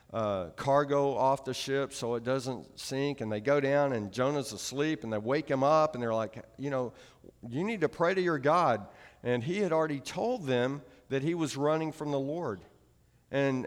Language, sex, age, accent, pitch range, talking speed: English, male, 50-69, American, 130-160 Hz, 205 wpm